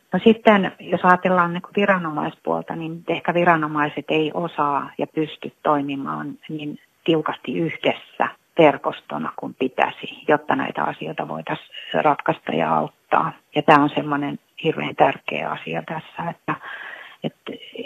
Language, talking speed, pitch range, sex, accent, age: Finnish, 130 wpm, 150-180 Hz, female, native, 30-49